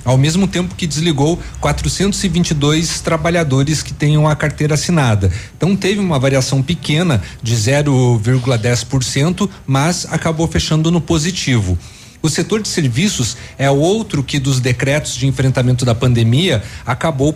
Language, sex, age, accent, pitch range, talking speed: Portuguese, male, 40-59, Brazilian, 130-170 Hz, 135 wpm